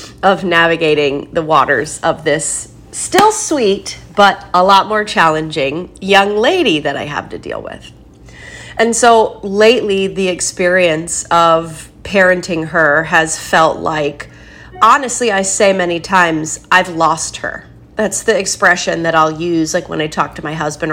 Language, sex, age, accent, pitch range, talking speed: English, female, 30-49, American, 160-195 Hz, 150 wpm